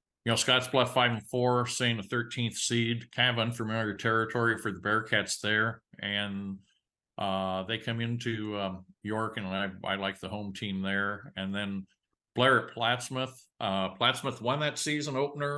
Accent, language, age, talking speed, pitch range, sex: American, English, 50-69, 175 wpm, 100-115 Hz, male